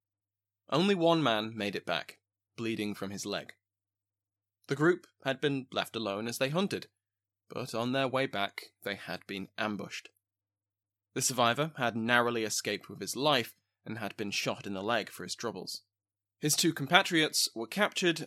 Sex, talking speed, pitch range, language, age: male, 170 wpm, 100-125 Hz, English, 20-39